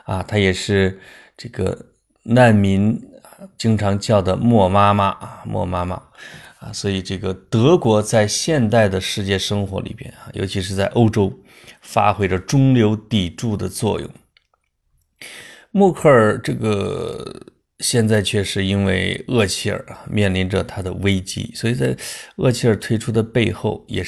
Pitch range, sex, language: 95-115 Hz, male, Chinese